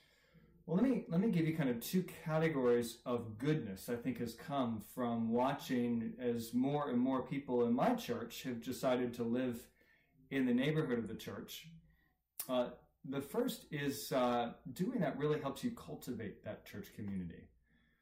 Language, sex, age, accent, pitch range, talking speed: English, male, 40-59, American, 120-155 Hz, 170 wpm